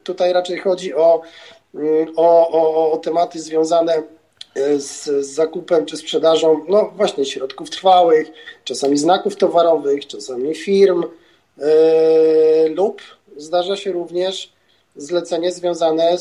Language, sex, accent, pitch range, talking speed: Polish, male, native, 160-190 Hz, 110 wpm